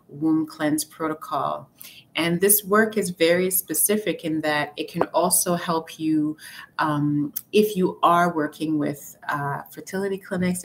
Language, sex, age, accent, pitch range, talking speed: English, female, 30-49, American, 145-170 Hz, 140 wpm